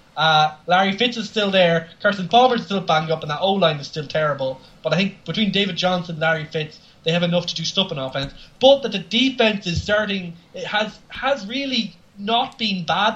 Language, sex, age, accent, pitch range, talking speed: English, male, 20-39, Irish, 155-195 Hz, 220 wpm